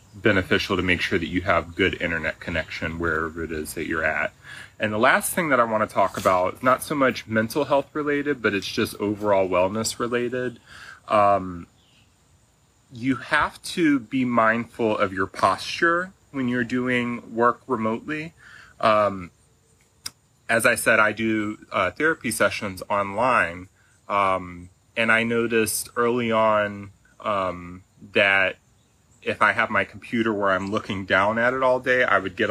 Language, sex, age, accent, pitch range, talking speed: English, male, 30-49, American, 95-120 Hz, 160 wpm